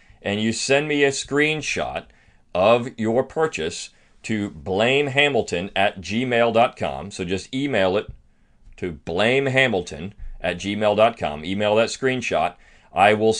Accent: American